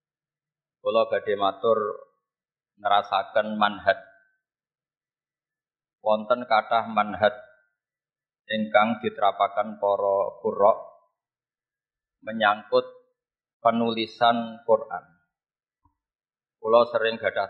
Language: Indonesian